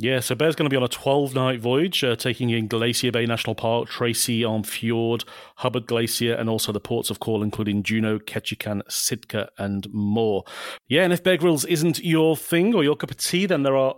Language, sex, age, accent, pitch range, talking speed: English, male, 40-59, British, 115-145 Hz, 215 wpm